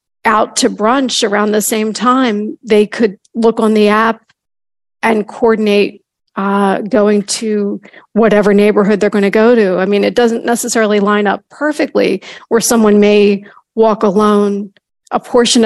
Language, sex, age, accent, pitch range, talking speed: English, female, 40-59, American, 210-235 Hz, 155 wpm